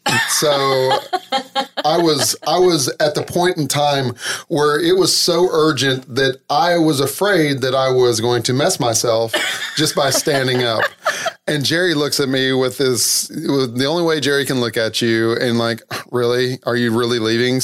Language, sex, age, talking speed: English, male, 30-49, 180 wpm